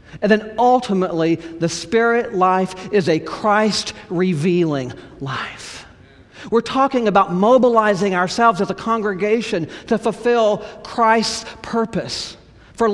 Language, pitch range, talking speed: English, 135-195 Hz, 105 wpm